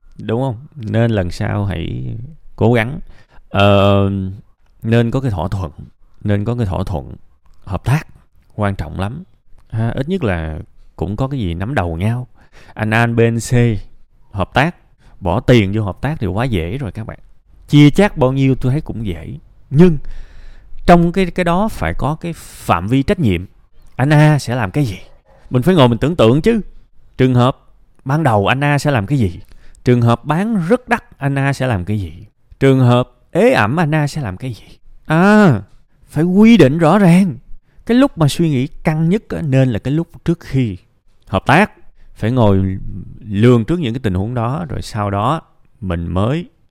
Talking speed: 190 wpm